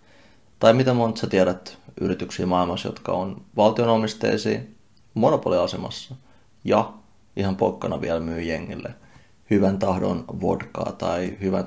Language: Finnish